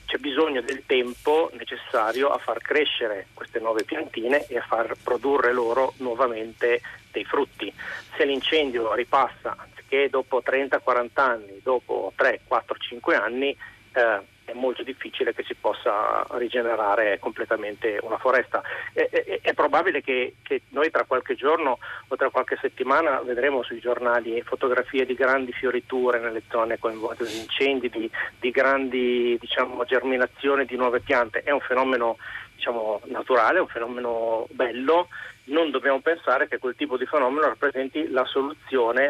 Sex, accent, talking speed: male, native, 145 wpm